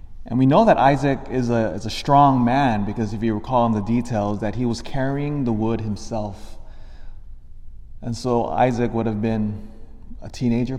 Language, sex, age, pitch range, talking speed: English, male, 30-49, 100-125 Hz, 185 wpm